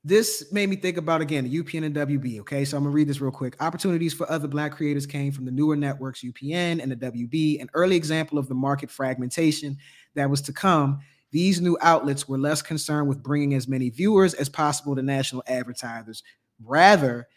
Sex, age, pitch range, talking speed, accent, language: male, 20-39, 130-155 Hz, 210 wpm, American, English